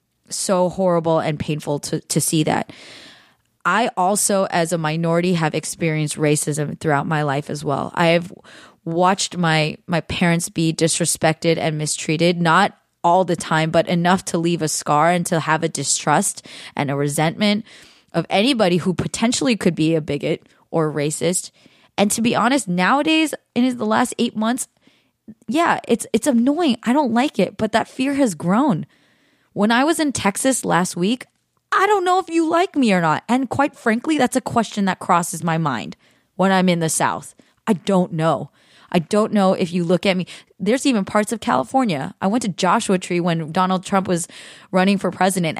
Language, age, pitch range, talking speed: English, 20-39, 165-215 Hz, 185 wpm